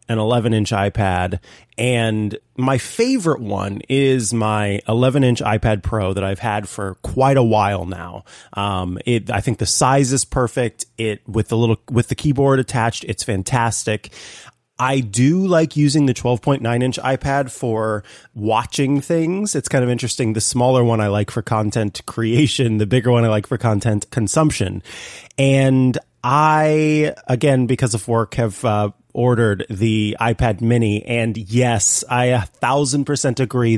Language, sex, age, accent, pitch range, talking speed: English, male, 30-49, American, 105-130 Hz, 160 wpm